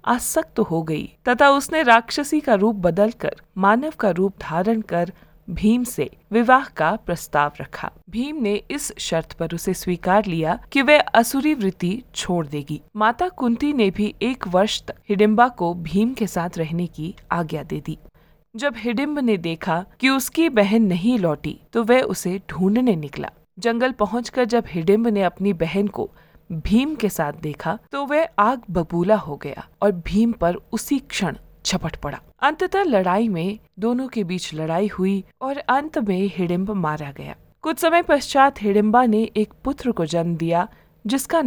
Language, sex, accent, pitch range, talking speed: Hindi, female, native, 175-245 Hz, 165 wpm